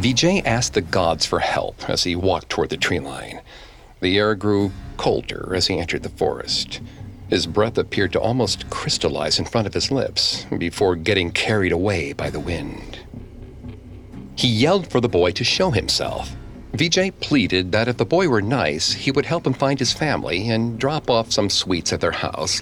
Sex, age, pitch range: male, 50-69, 85-125 Hz